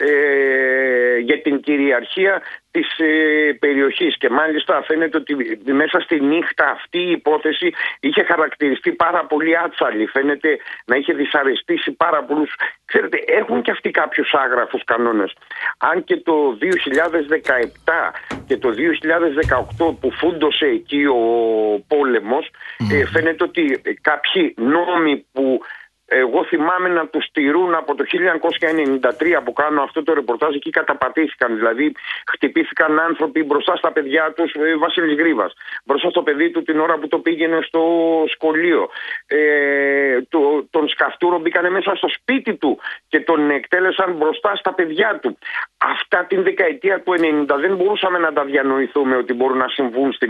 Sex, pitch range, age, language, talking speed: male, 140-180 Hz, 50-69, Greek, 140 wpm